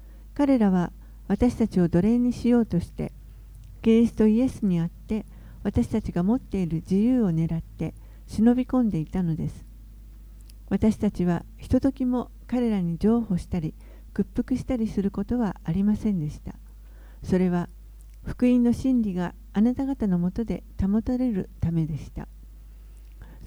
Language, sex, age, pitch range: Japanese, female, 50-69, 175-235 Hz